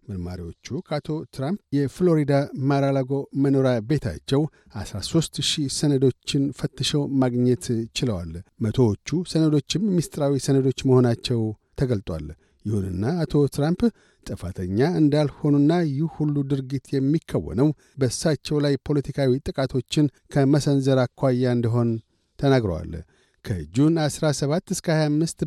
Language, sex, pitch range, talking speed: Amharic, male, 110-145 Hz, 85 wpm